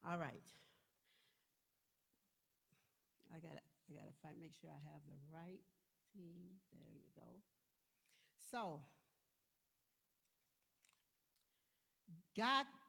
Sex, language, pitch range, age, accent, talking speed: female, English, 180-255 Hz, 60-79, American, 85 wpm